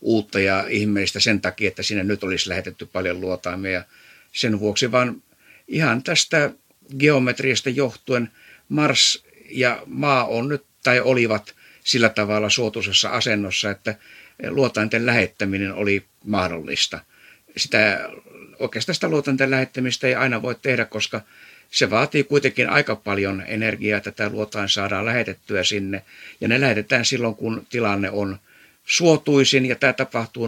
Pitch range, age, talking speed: 100-120 Hz, 60-79, 125 wpm